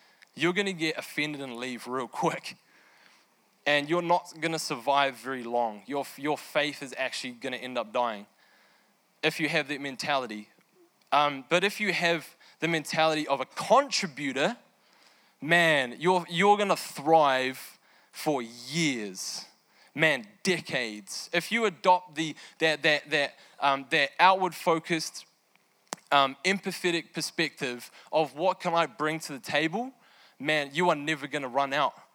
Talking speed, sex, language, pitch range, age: 140 wpm, male, English, 135-170 Hz, 20-39